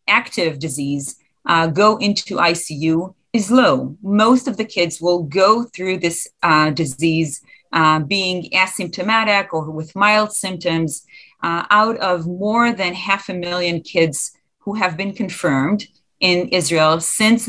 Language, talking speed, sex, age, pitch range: English, 140 wpm, female, 40-59, 160-210 Hz